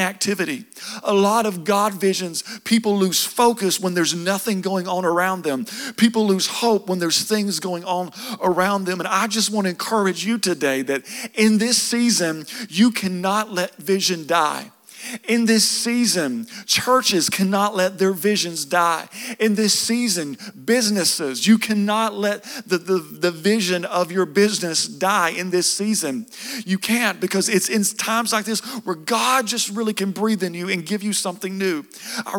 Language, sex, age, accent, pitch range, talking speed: English, male, 40-59, American, 175-220 Hz, 170 wpm